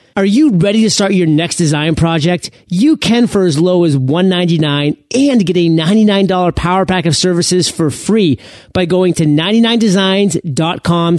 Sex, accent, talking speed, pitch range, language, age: male, American, 160 wpm, 150-195 Hz, English, 40-59